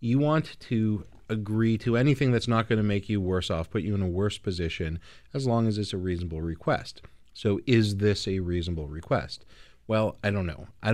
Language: English